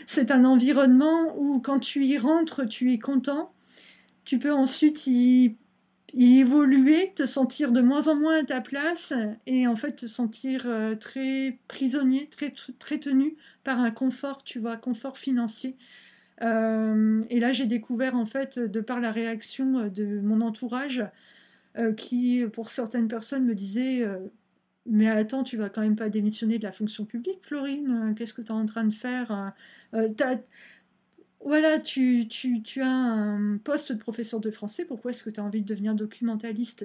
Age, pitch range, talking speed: 50-69, 220-270 Hz, 175 wpm